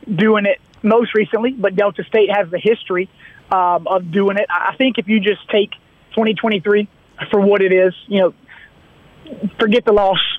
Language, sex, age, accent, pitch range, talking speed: English, male, 30-49, American, 185-210 Hz, 175 wpm